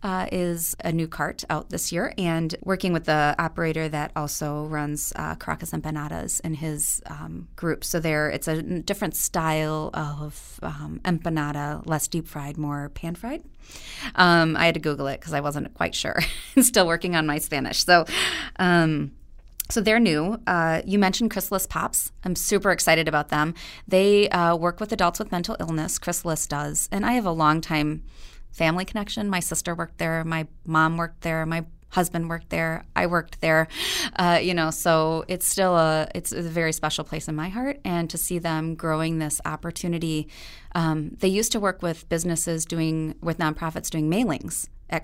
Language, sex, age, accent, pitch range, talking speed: English, female, 30-49, American, 155-175 Hz, 185 wpm